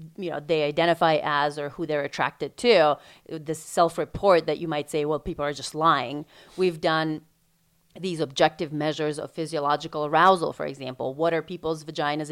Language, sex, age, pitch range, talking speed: English, female, 30-49, 155-175 Hz, 170 wpm